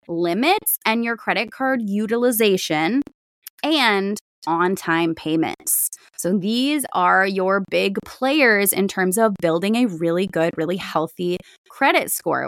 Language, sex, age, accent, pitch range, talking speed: English, female, 20-39, American, 190-260 Hz, 125 wpm